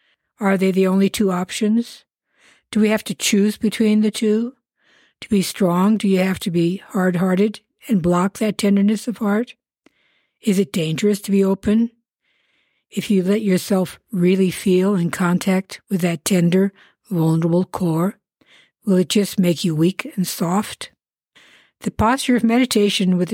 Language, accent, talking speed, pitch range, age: English, American, 160 wpm, 180-220 Hz, 60-79